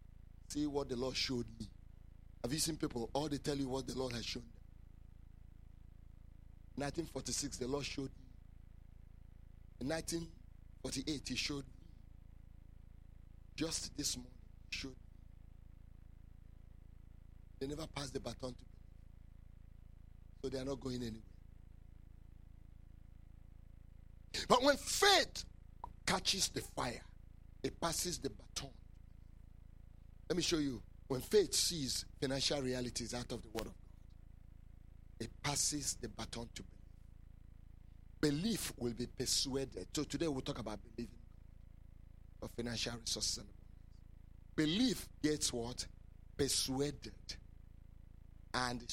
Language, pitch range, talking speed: English, 90-125 Hz, 120 wpm